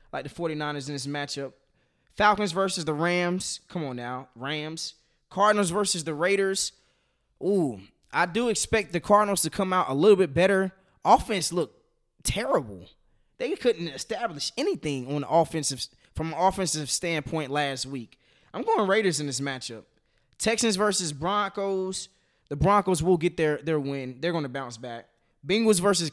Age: 20-39